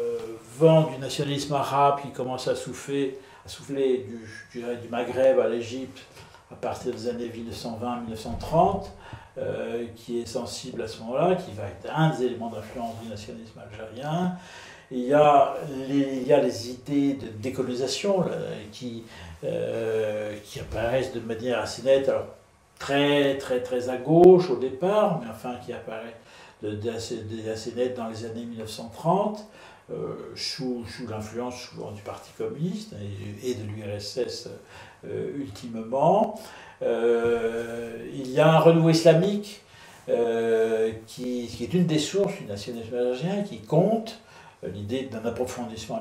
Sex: male